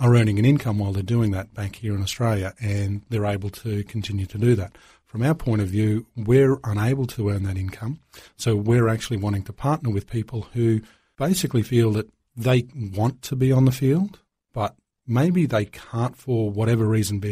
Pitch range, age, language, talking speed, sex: 110-130 Hz, 40-59, English, 200 wpm, male